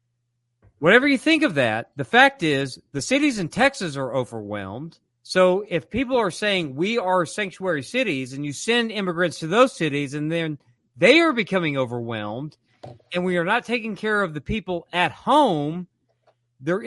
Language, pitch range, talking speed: English, 135-195 Hz, 170 wpm